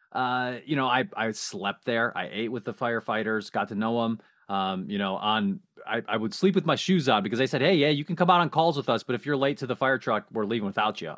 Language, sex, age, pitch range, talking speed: English, male, 30-49, 110-160 Hz, 285 wpm